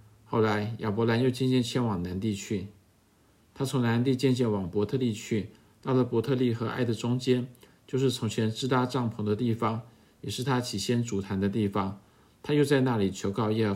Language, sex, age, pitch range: Chinese, male, 50-69, 105-125 Hz